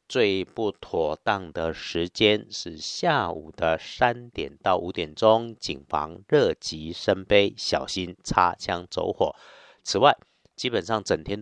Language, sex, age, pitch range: Chinese, male, 50-69, 90-120 Hz